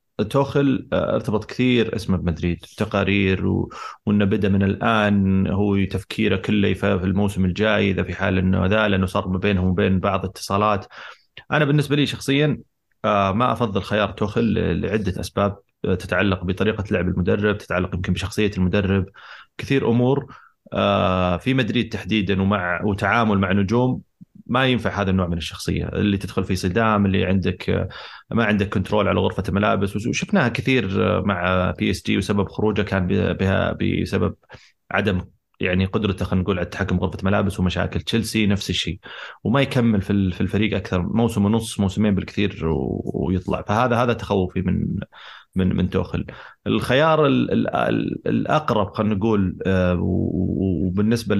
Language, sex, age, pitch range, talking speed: Arabic, male, 30-49, 95-110 Hz, 135 wpm